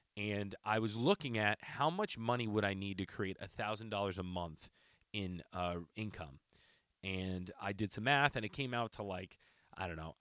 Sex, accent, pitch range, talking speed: male, American, 95-120 Hz, 195 wpm